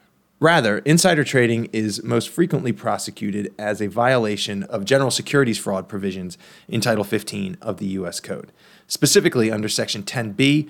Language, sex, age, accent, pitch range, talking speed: English, male, 20-39, American, 100-130 Hz, 145 wpm